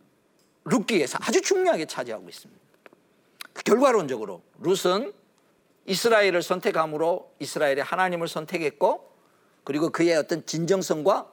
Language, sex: Korean, male